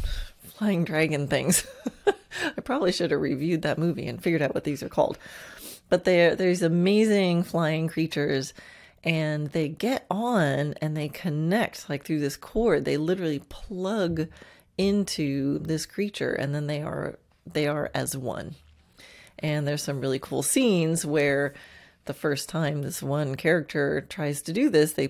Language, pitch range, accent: English, 145-185 Hz, American